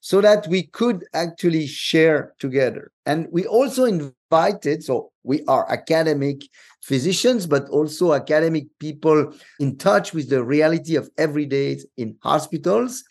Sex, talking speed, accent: male, 135 wpm, French